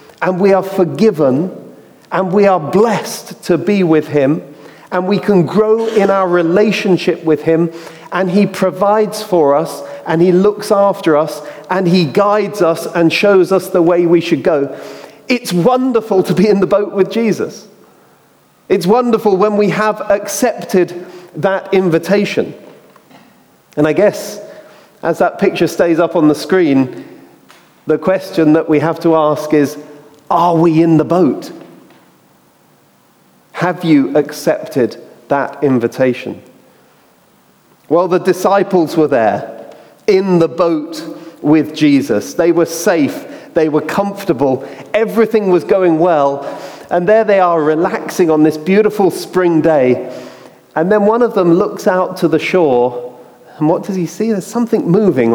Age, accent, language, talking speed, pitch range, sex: 40-59, British, English, 150 wpm, 155-200 Hz, male